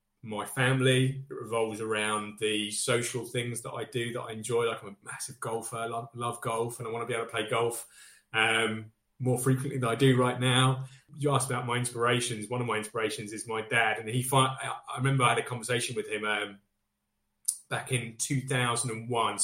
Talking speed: 200 wpm